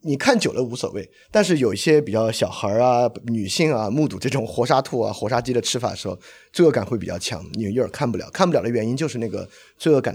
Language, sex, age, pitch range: Chinese, male, 30-49, 105-130 Hz